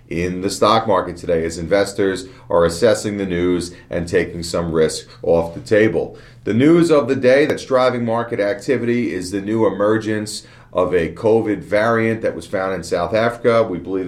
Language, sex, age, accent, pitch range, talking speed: English, male, 40-59, American, 85-115 Hz, 185 wpm